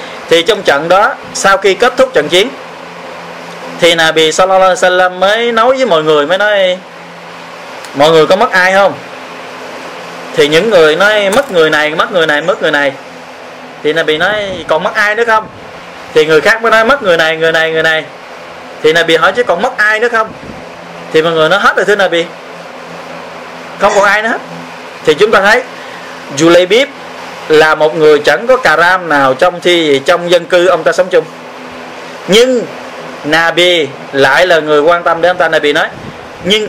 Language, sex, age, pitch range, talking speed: Vietnamese, male, 20-39, 160-215 Hz, 190 wpm